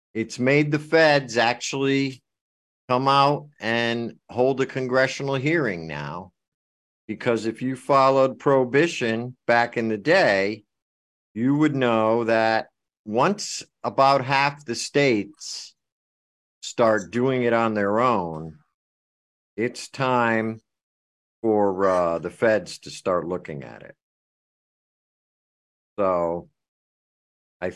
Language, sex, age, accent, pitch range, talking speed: English, male, 50-69, American, 85-125 Hz, 110 wpm